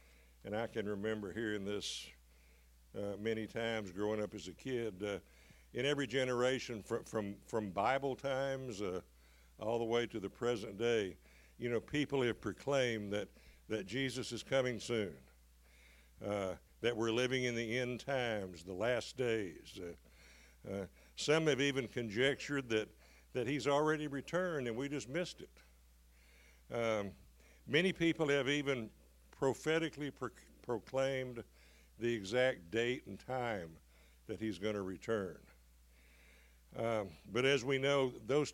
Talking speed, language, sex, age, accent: 145 wpm, English, male, 60-79, American